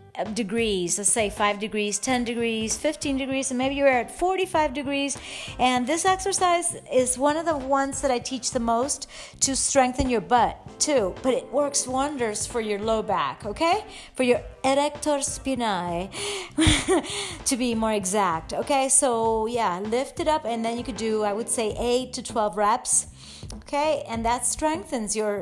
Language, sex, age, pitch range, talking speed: English, female, 40-59, 225-285 Hz, 170 wpm